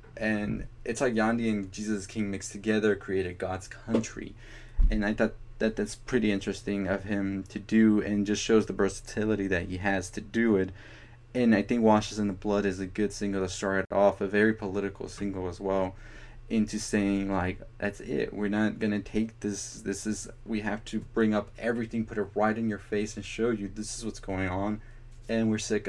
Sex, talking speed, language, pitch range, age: male, 210 wpm, English, 100-115 Hz, 20-39